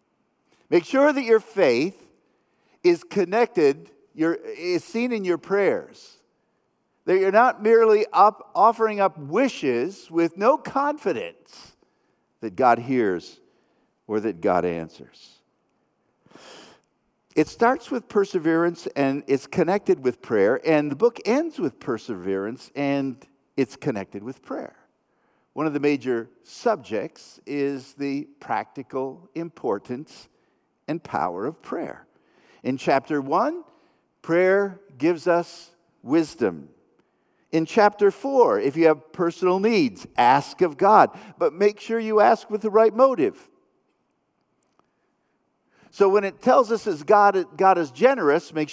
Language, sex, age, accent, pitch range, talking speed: English, male, 50-69, American, 140-225 Hz, 125 wpm